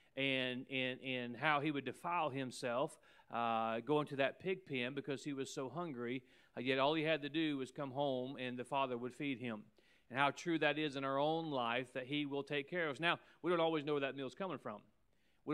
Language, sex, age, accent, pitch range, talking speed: English, male, 40-59, American, 135-160 Hz, 240 wpm